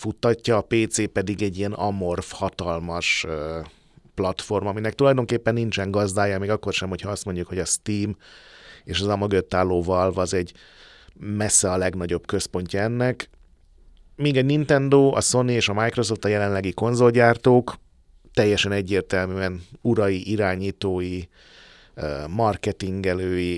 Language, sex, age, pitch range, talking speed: Hungarian, male, 30-49, 90-115 Hz, 125 wpm